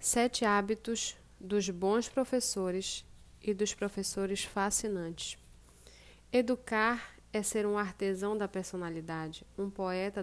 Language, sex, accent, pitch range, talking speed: Portuguese, female, Brazilian, 180-220 Hz, 105 wpm